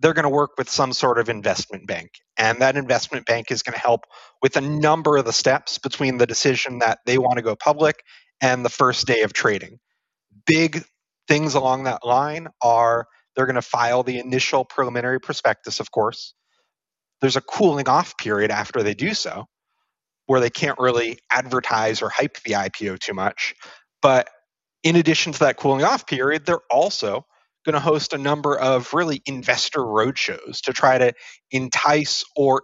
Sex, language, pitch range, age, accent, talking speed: male, English, 125-155 Hz, 30-49, American, 180 wpm